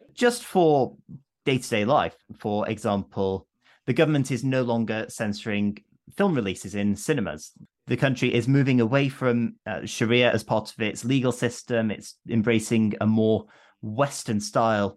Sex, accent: male, British